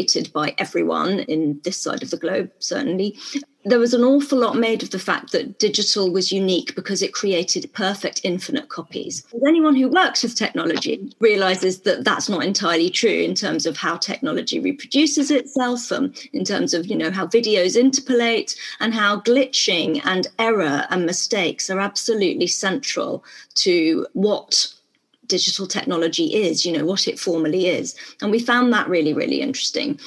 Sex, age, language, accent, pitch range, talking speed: female, 30-49, English, British, 190-265 Hz, 165 wpm